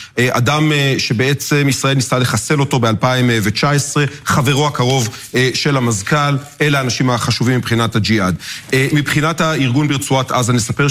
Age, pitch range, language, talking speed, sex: 40-59, 120-145 Hz, Hebrew, 115 wpm, male